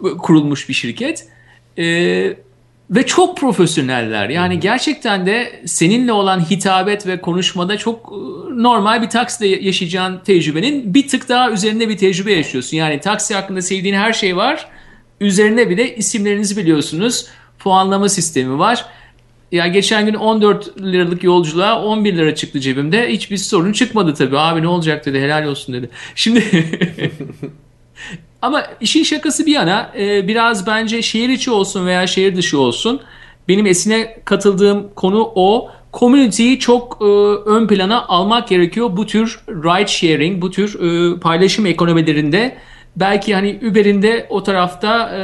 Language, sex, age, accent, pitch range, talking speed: Turkish, male, 50-69, native, 175-220 Hz, 140 wpm